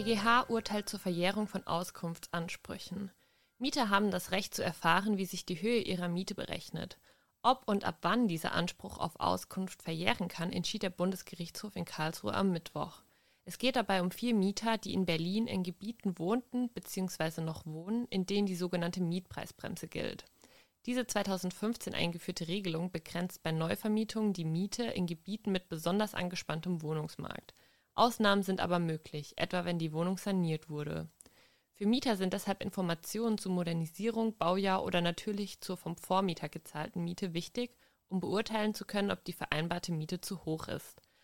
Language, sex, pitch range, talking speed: German, female, 170-210 Hz, 160 wpm